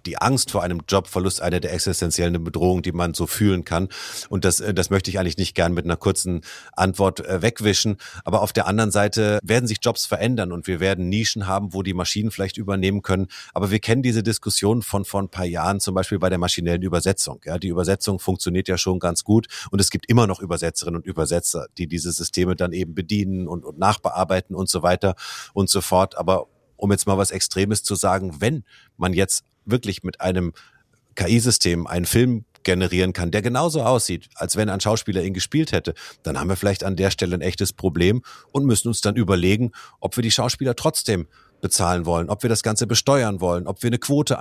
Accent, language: German, German